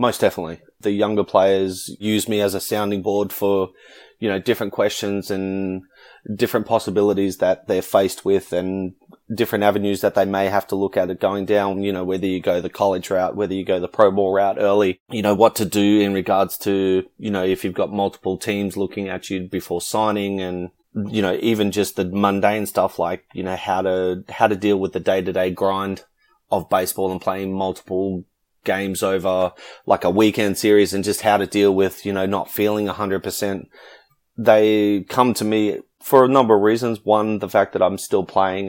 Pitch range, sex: 95-105 Hz, male